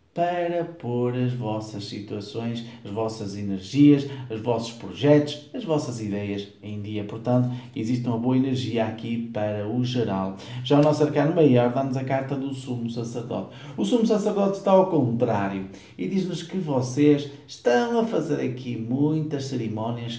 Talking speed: 155 wpm